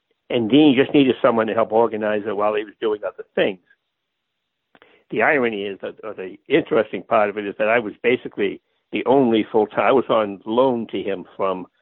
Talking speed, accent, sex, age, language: 210 wpm, American, male, 60-79, English